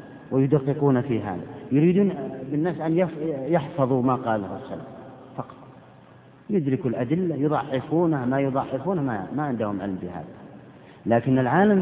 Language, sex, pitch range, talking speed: Arabic, male, 115-180 Hz, 115 wpm